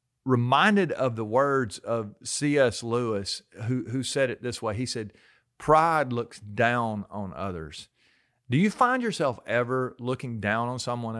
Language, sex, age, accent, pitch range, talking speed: English, male, 40-59, American, 115-150 Hz, 155 wpm